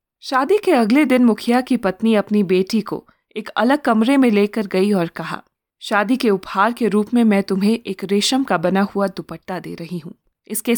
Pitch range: 190-245 Hz